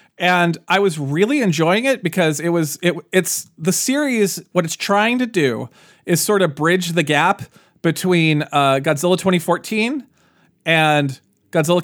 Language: English